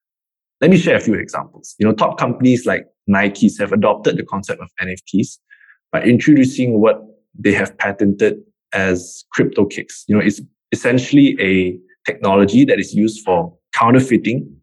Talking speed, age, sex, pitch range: 155 wpm, 20-39, male, 95-125 Hz